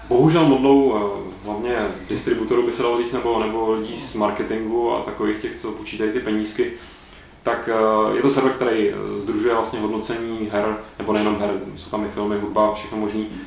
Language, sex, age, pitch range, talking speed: Czech, male, 20-39, 110-130 Hz, 170 wpm